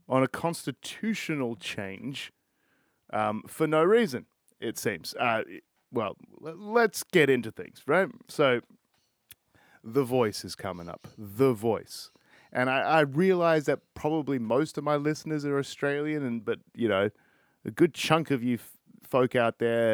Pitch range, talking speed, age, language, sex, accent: 120-155 Hz, 150 wpm, 30-49, English, male, Australian